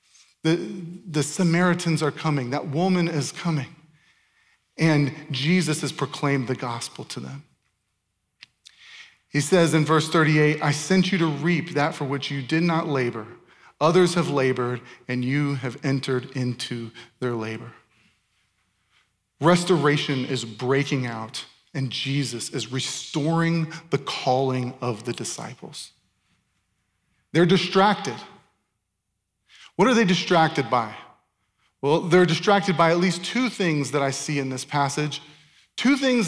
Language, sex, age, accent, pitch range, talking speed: English, male, 40-59, American, 125-170 Hz, 130 wpm